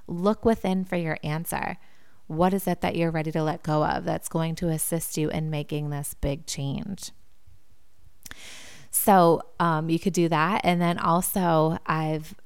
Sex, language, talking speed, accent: female, English, 170 wpm, American